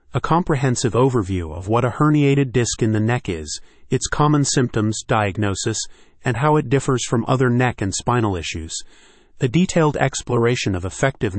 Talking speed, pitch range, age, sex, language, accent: 165 wpm, 105-130 Hz, 30-49, male, English, American